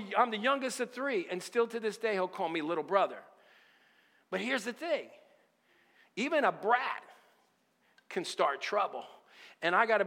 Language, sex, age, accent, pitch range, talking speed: English, male, 50-69, American, 175-240 Hz, 165 wpm